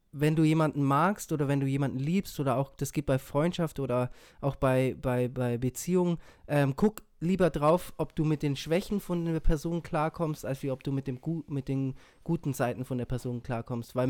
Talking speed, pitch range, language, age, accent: 215 wpm, 135-160 Hz, German, 20-39, German